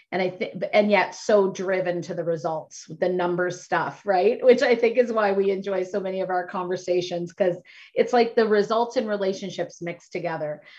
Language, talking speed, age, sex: English, 195 wpm, 30-49, female